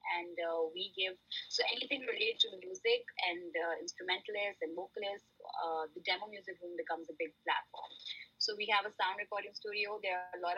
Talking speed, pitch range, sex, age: 195 wpm, 175-205 Hz, female, 20-39